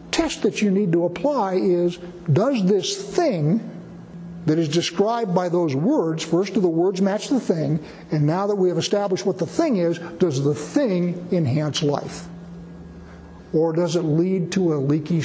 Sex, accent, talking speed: male, American, 175 wpm